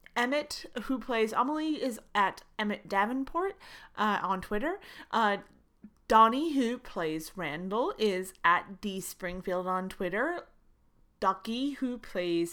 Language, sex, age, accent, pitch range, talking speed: English, female, 30-49, American, 190-270 Hz, 120 wpm